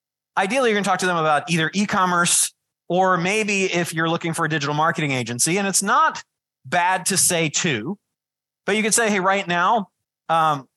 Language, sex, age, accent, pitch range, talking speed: English, male, 30-49, American, 145-180 Hz, 195 wpm